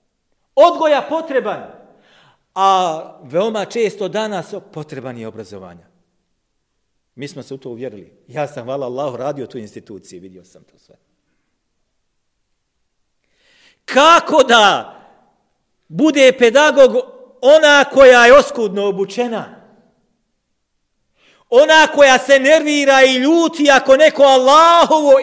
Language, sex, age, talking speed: English, male, 50-69, 100 wpm